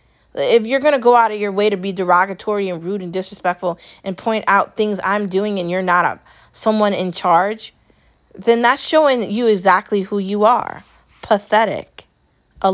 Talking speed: 185 wpm